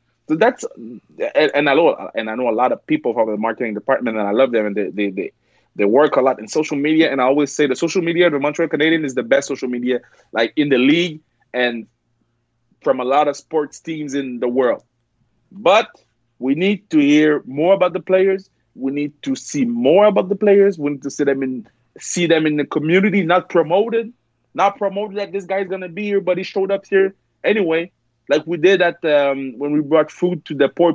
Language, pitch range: English, 135-220 Hz